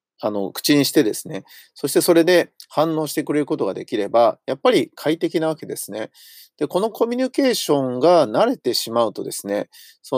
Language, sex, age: Japanese, male, 40-59